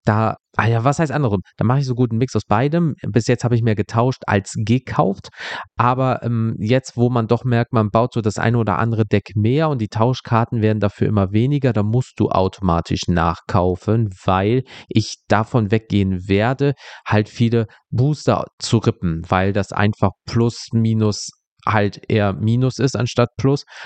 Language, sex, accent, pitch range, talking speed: German, male, German, 100-125 Hz, 180 wpm